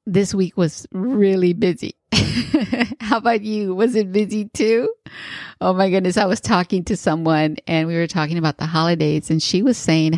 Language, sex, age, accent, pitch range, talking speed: English, female, 30-49, American, 155-205 Hz, 185 wpm